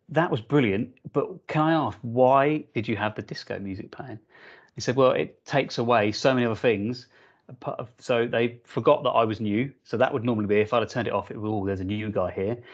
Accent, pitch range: British, 105-130 Hz